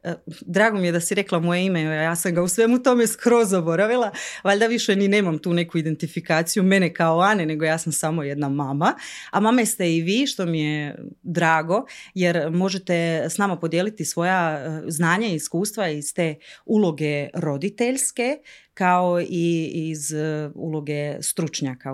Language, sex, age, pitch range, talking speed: Croatian, female, 30-49, 150-195 Hz, 160 wpm